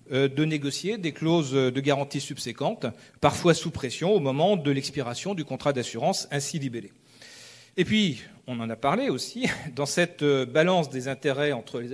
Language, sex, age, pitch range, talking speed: French, male, 40-59, 125-160 Hz, 165 wpm